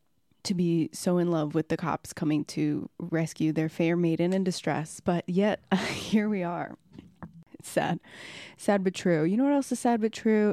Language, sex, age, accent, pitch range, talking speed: English, female, 20-39, American, 175-215 Hz, 190 wpm